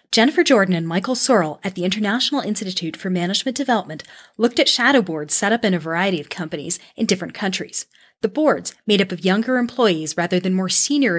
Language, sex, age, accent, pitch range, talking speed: English, female, 30-49, American, 180-240 Hz, 200 wpm